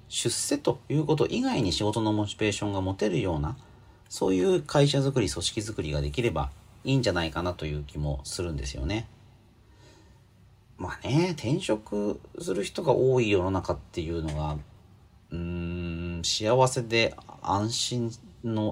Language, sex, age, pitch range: Japanese, male, 40-59, 80-120 Hz